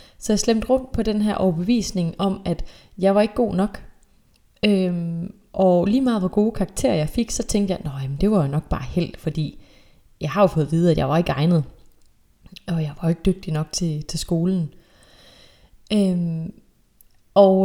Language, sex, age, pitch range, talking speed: Danish, female, 30-49, 165-200 Hz, 195 wpm